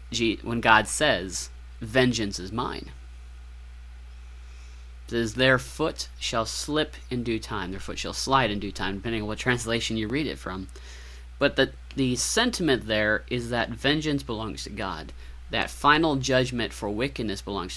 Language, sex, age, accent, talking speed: English, male, 30-49, American, 160 wpm